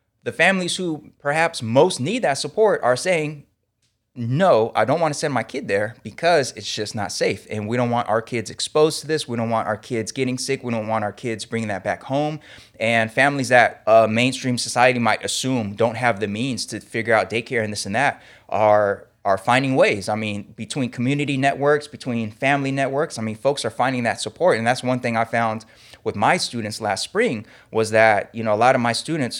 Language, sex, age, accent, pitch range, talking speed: English, male, 20-39, American, 105-125 Hz, 220 wpm